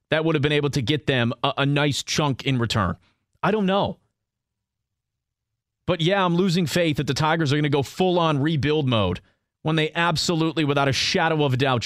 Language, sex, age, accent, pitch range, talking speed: English, male, 30-49, American, 115-155 Hz, 205 wpm